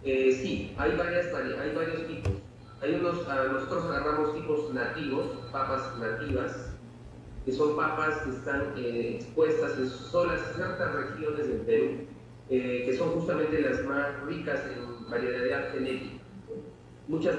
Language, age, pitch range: Italian, 40-59, 130-155 Hz